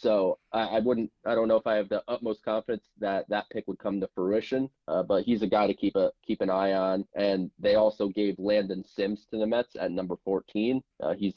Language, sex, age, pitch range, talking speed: English, male, 20-39, 100-120 Hz, 245 wpm